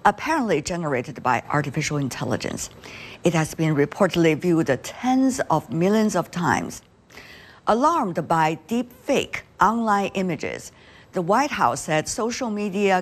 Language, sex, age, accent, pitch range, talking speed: English, female, 50-69, American, 160-230 Hz, 125 wpm